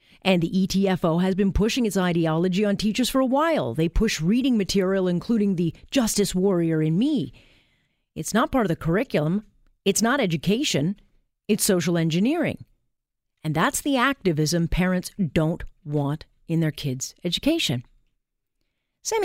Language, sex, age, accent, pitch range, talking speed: English, female, 40-59, American, 165-220 Hz, 145 wpm